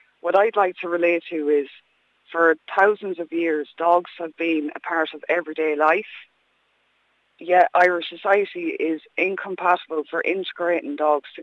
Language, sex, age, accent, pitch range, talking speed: English, female, 20-39, Irish, 155-180 Hz, 145 wpm